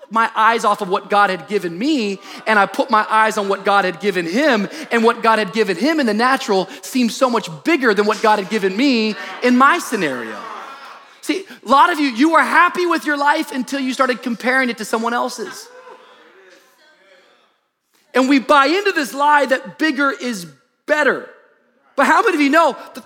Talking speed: 205 wpm